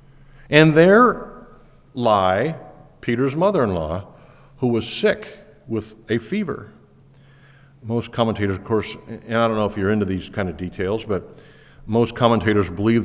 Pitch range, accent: 100-135 Hz, American